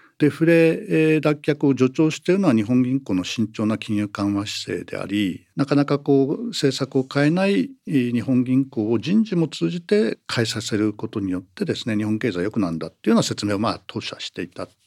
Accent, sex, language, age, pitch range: native, male, Japanese, 50-69, 115-185 Hz